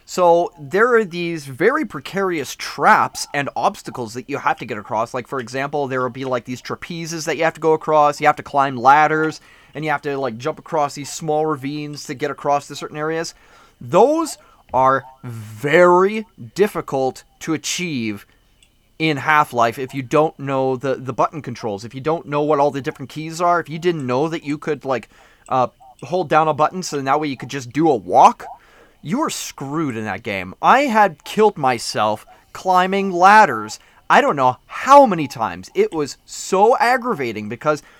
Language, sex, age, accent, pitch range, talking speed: English, male, 30-49, American, 135-180 Hz, 195 wpm